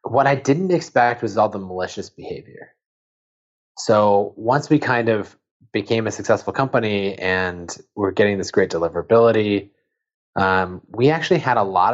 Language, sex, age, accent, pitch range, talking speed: English, male, 20-39, American, 100-140 Hz, 150 wpm